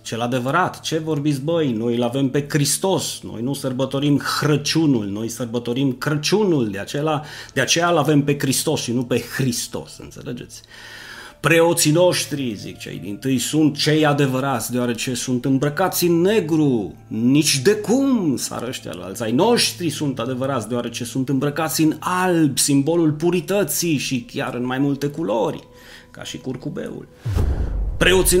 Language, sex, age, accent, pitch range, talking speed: Romanian, male, 30-49, native, 120-165 Hz, 145 wpm